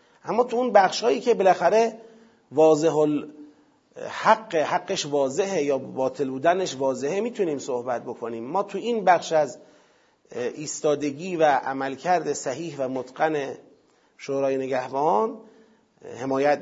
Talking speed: 110 wpm